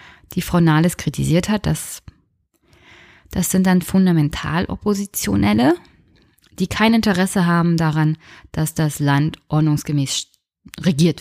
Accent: German